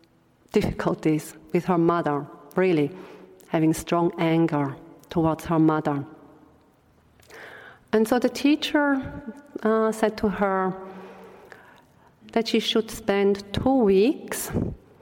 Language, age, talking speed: English, 50-69, 100 wpm